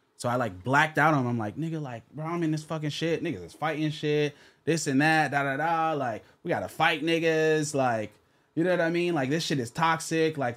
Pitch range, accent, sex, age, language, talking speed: 110-145 Hz, American, male, 20-39, English, 250 wpm